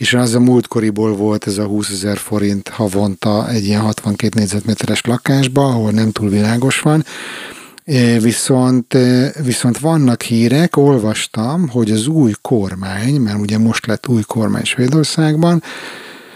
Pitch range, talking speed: 105-125 Hz, 135 wpm